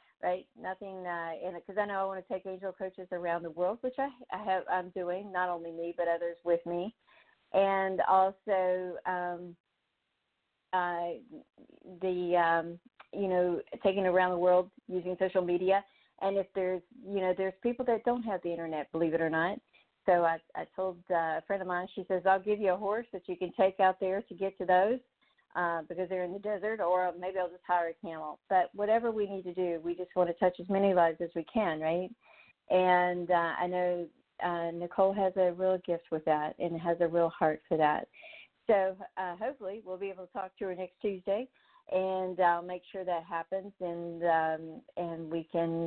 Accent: American